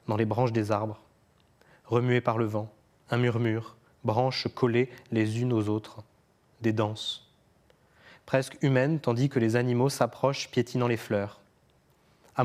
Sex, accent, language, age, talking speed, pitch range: male, French, French, 20-39, 145 wpm, 105-125 Hz